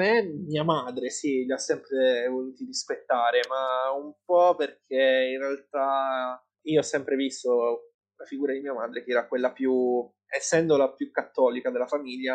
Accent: Italian